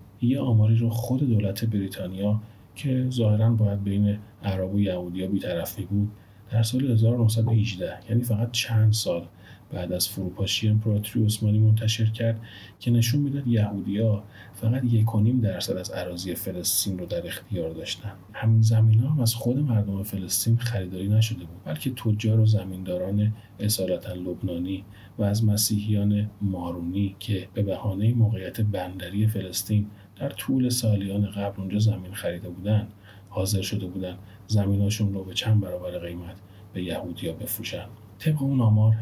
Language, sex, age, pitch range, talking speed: Persian, male, 40-59, 95-110 Hz, 145 wpm